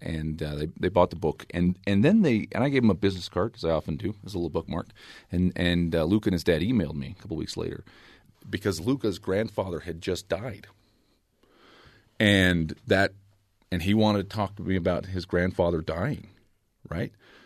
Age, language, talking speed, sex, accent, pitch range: 40-59, English, 205 wpm, male, American, 85-100 Hz